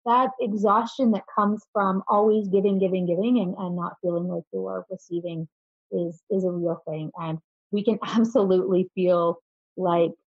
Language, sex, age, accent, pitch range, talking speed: English, female, 30-49, American, 170-220 Hz, 165 wpm